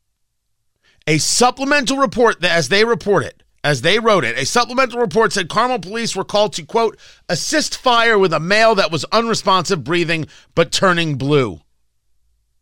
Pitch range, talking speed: 125-210 Hz, 155 wpm